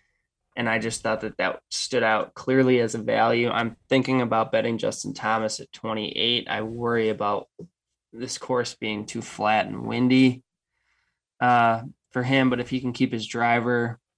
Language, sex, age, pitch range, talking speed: English, male, 20-39, 110-125 Hz, 170 wpm